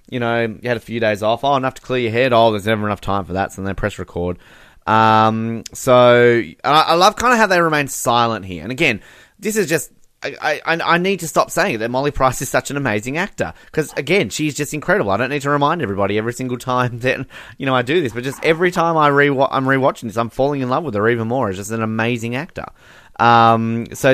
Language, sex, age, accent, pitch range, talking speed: English, male, 20-39, Australian, 100-130 Hz, 260 wpm